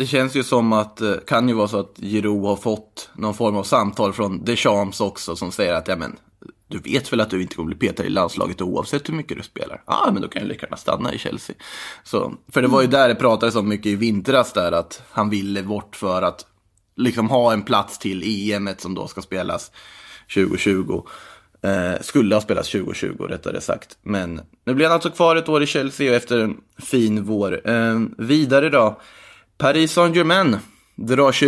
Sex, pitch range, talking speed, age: male, 105-130 Hz, 205 wpm, 20-39